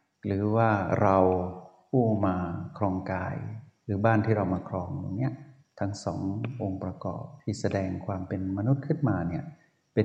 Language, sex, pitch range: Thai, male, 95-120 Hz